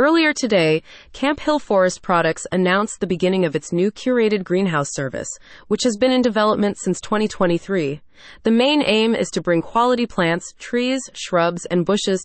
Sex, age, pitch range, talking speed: female, 30-49, 165-230 Hz, 165 wpm